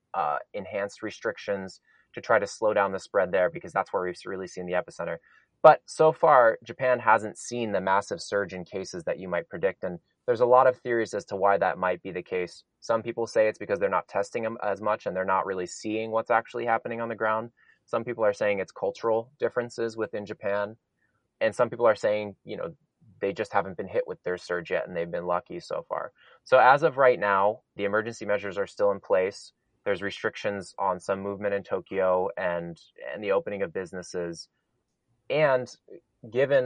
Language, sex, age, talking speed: English, male, 20-39, 210 wpm